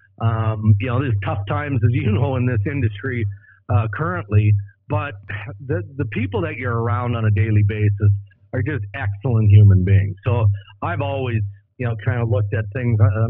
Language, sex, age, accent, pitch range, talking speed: English, male, 50-69, American, 100-120 Hz, 185 wpm